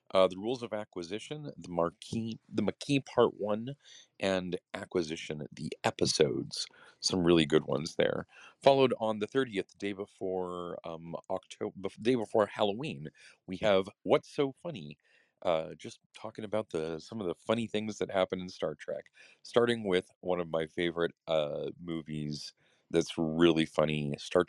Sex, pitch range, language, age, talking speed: male, 85-105 Hz, English, 40-59, 155 wpm